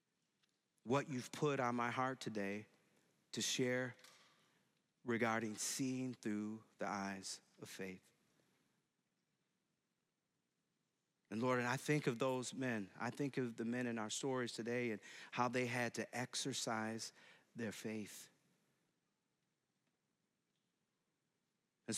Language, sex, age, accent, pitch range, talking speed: English, male, 40-59, American, 115-150 Hz, 115 wpm